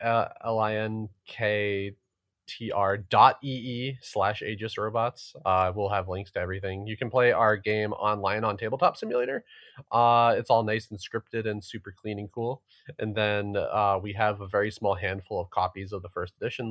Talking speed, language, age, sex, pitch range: 170 wpm, English, 30-49, male, 95-115 Hz